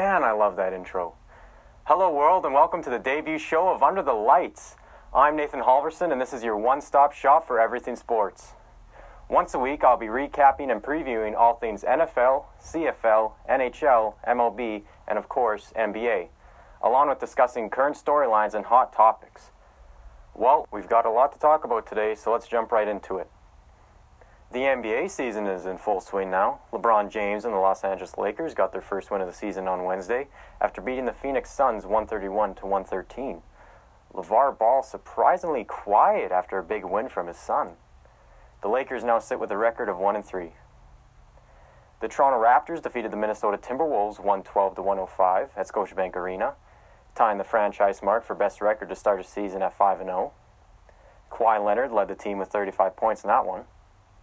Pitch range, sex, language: 95-115 Hz, male, English